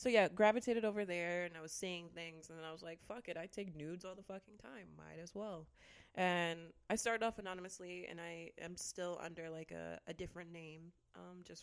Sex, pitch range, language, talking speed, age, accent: female, 150-180 Hz, English, 225 wpm, 20-39, American